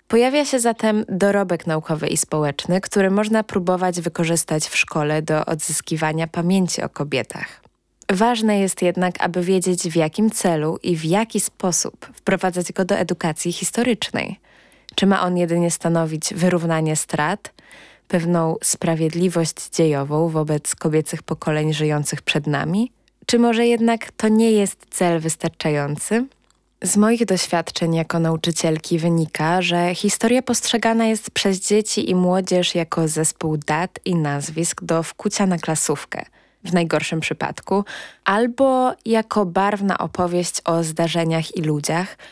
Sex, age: female, 20-39